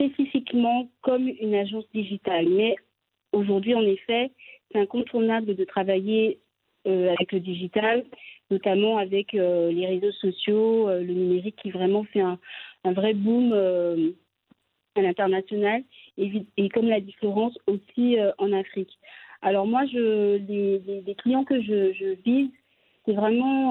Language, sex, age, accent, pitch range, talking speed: French, female, 40-59, French, 195-240 Hz, 145 wpm